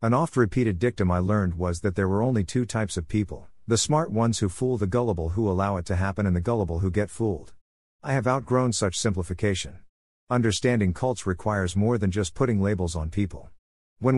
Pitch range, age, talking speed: 90-115 Hz, 50-69, 205 wpm